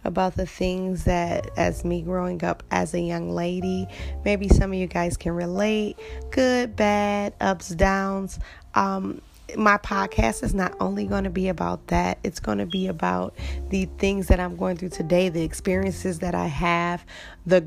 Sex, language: female, English